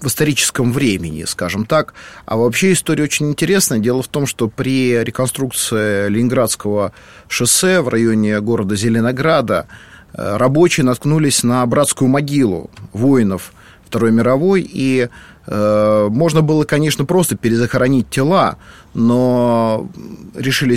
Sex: male